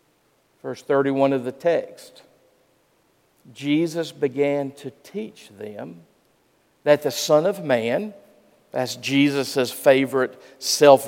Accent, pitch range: American, 130-165 Hz